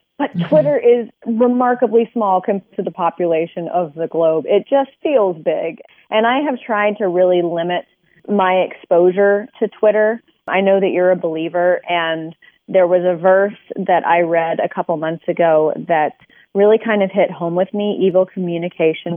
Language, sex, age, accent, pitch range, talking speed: English, female, 30-49, American, 170-210 Hz, 170 wpm